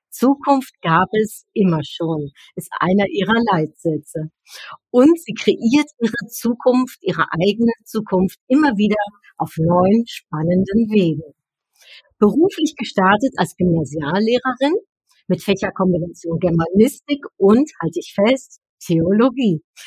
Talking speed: 105 wpm